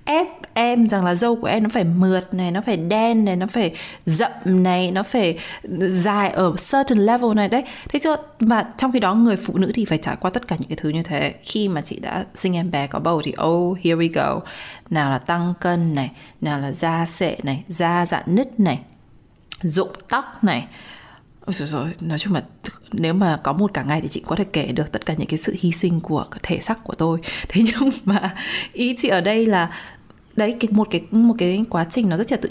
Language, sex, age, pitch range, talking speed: Vietnamese, female, 20-39, 165-210 Hz, 235 wpm